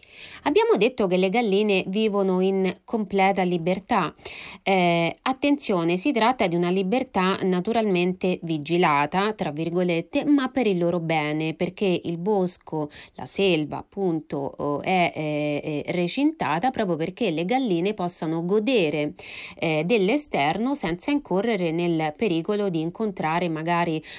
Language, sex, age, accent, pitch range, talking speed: Italian, female, 30-49, native, 170-210 Hz, 120 wpm